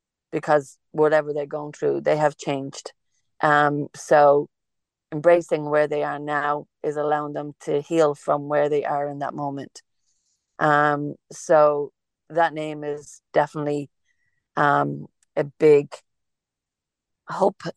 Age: 40-59